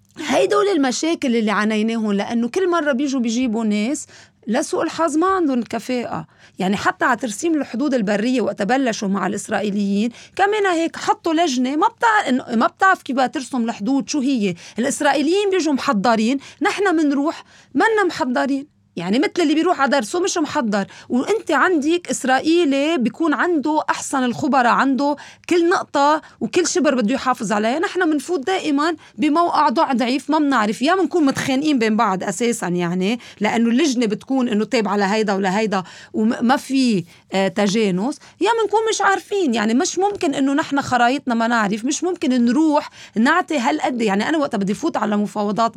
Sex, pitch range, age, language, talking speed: female, 230-325 Hz, 30-49, Arabic, 150 wpm